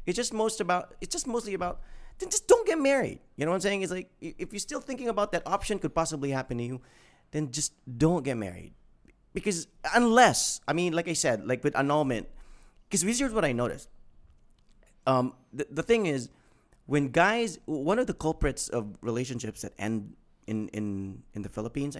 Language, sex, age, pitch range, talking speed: English, male, 30-49, 120-170 Hz, 200 wpm